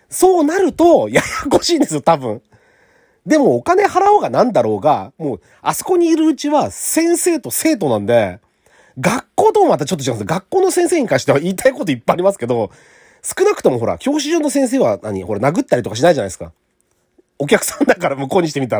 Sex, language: male, Japanese